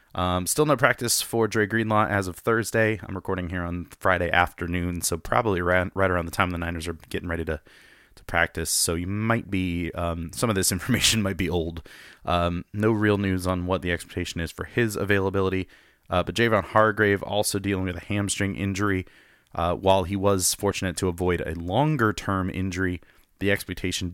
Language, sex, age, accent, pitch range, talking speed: English, male, 30-49, American, 85-100 Hz, 190 wpm